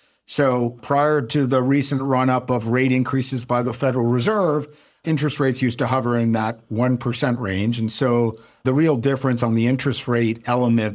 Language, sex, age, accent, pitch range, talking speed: English, male, 50-69, American, 110-130 Hz, 175 wpm